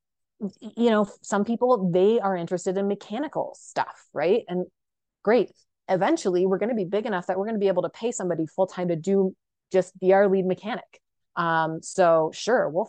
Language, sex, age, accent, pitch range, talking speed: English, female, 30-49, American, 165-200 Hz, 195 wpm